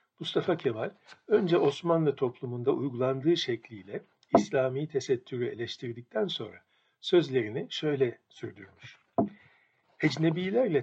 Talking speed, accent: 85 wpm, native